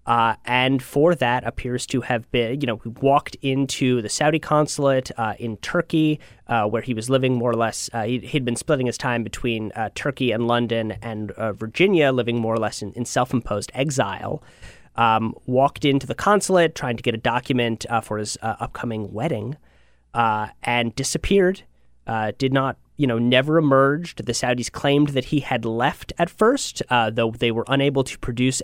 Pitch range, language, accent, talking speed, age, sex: 115-145 Hz, English, American, 190 wpm, 30-49, male